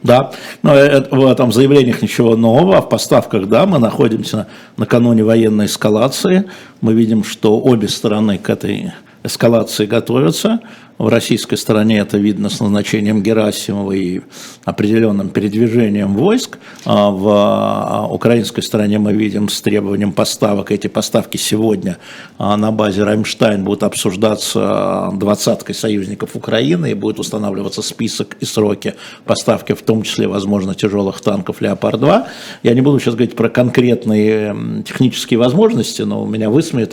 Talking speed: 135 wpm